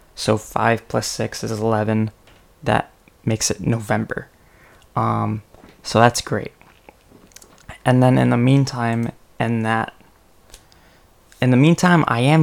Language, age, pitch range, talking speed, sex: English, 20-39, 110-120 Hz, 125 wpm, male